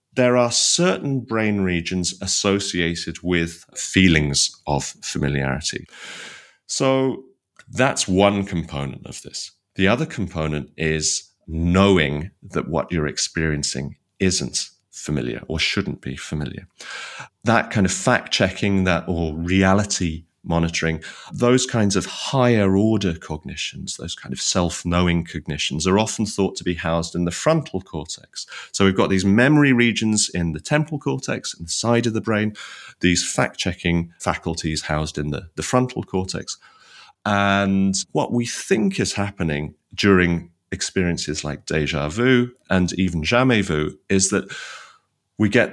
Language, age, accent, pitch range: English, 30-49, British, 80-105 Hz